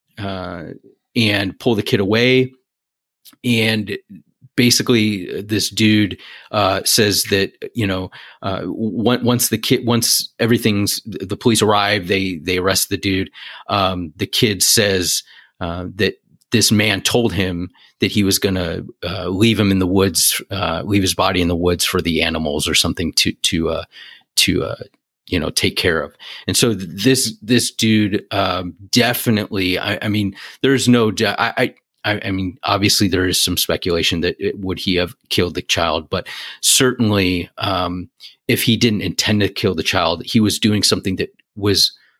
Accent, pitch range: American, 90-115 Hz